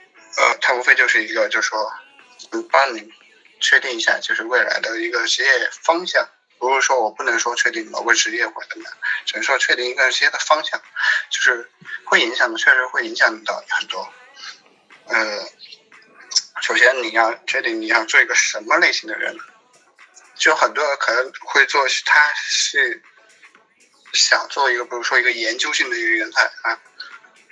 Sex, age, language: male, 20-39, Chinese